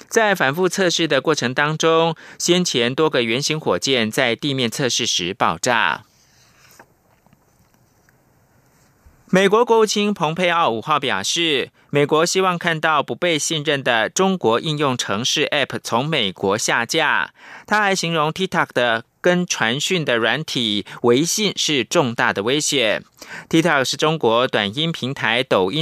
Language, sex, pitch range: German, male, 125-170 Hz